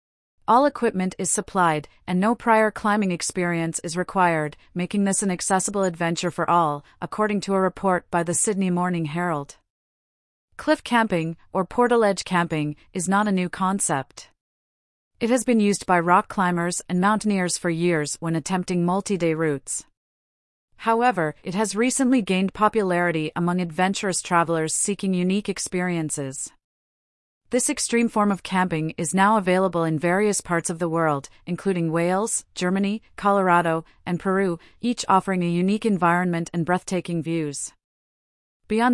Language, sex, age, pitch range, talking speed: English, female, 40-59, 170-200 Hz, 145 wpm